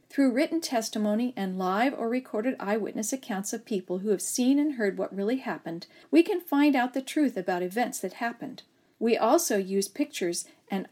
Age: 50-69